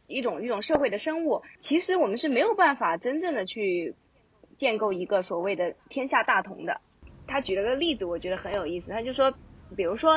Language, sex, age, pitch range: Chinese, female, 20-39, 195-300 Hz